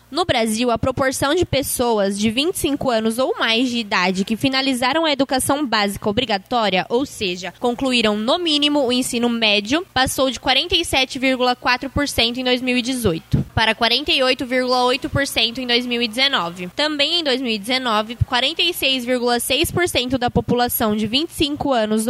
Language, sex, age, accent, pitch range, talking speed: Portuguese, female, 10-29, Brazilian, 235-280 Hz, 120 wpm